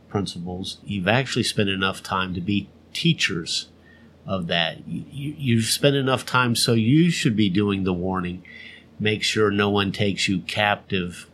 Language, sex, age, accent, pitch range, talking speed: English, male, 50-69, American, 95-115 Hz, 155 wpm